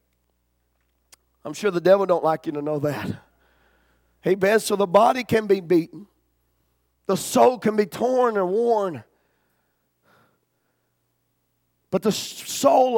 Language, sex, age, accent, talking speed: English, male, 40-59, American, 125 wpm